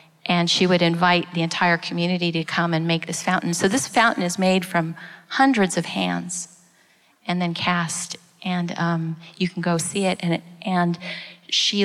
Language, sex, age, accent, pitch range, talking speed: English, female, 30-49, American, 170-195 Hz, 180 wpm